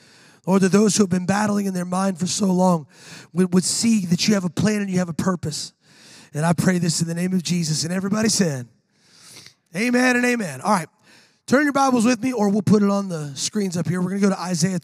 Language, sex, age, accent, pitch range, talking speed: English, male, 30-49, American, 165-215 Hz, 255 wpm